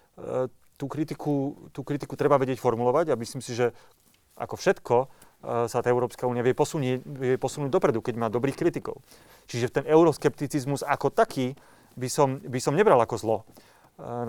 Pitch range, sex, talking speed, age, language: 120-145 Hz, male, 165 wpm, 30-49, Slovak